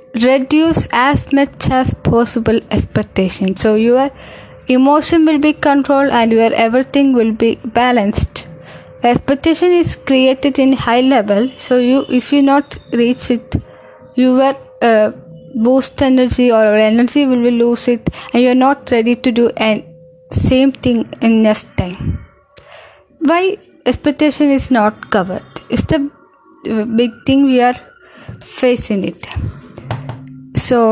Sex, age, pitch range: female, 10-29, 220-275 Hz